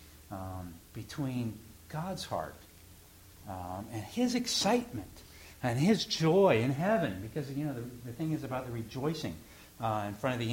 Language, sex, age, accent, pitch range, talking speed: English, male, 50-69, American, 100-155 Hz, 160 wpm